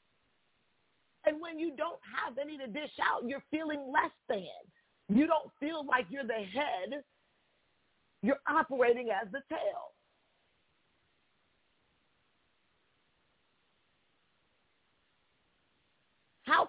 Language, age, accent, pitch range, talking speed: English, 40-59, American, 195-305 Hz, 95 wpm